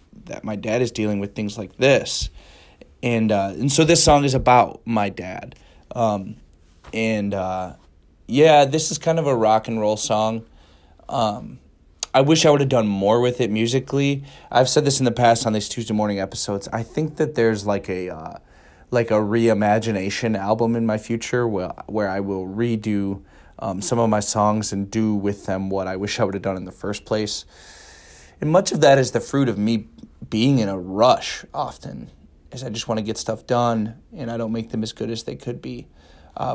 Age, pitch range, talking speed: 20-39, 95-120 Hz, 210 wpm